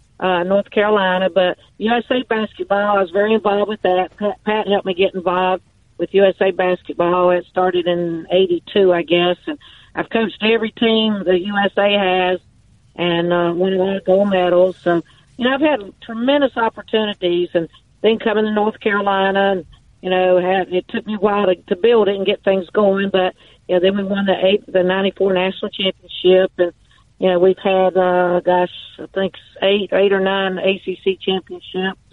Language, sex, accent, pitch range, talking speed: English, female, American, 180-200 Hz, 185 wpm